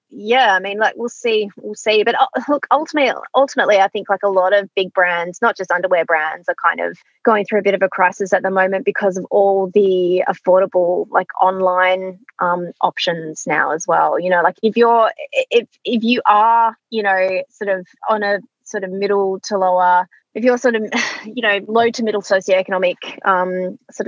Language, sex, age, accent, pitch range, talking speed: English, female, 20-39, Australian, 190-255 Hz, 205 wpm